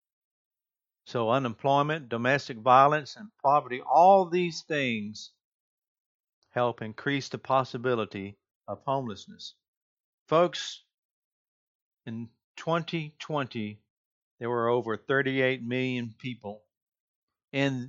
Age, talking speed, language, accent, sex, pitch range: 50-69, 85 wpm, English, American, male, 110-155 Hz